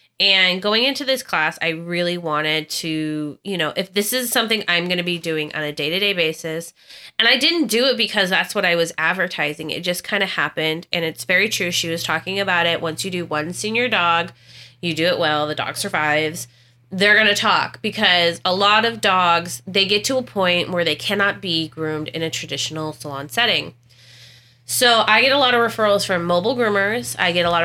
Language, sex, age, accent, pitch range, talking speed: English, female, 20-39, American, 155-195 Hz, 215 wpm